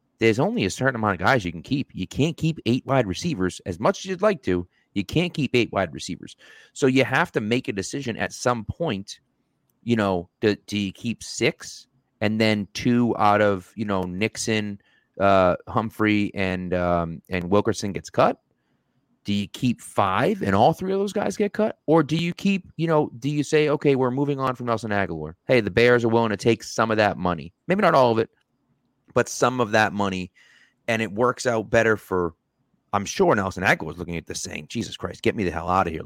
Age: 30-49